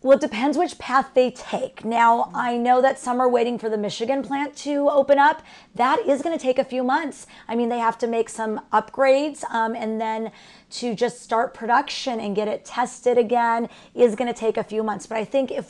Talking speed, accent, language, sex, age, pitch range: 230 wpm, American, English, female, 40-59, 220-260 Hz